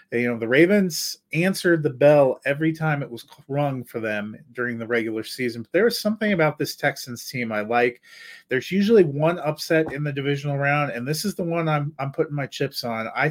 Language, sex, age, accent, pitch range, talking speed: English, male, 30-49, American, 115-150 Hz, 210 wpm